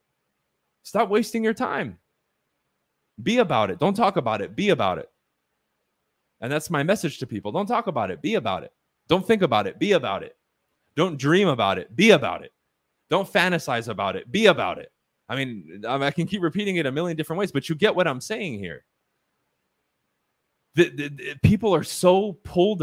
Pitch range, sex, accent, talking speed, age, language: 125-175 Hz, male, American, 185 wpm, 20-39, English